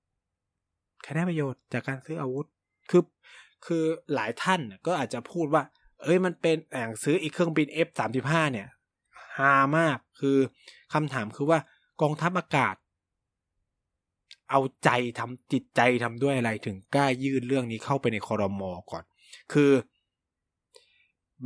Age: 20-39